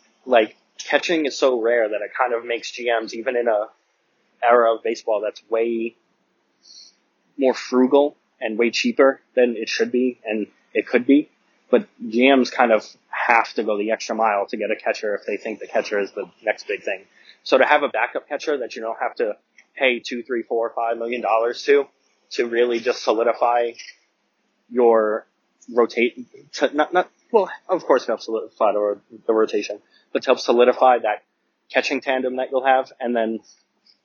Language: English